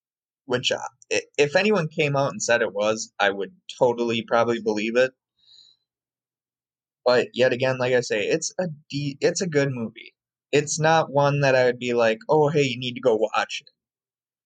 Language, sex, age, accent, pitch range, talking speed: English, male, 20-39, American, 115-155 Hz, 185 wpm